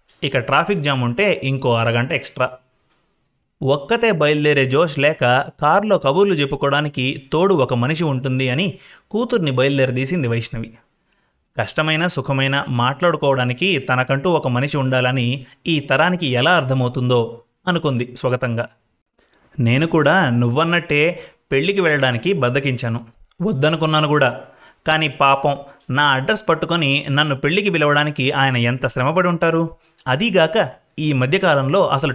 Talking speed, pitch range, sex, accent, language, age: 110 wpm, 125-160 Hz, male, native, Telugu, 30-49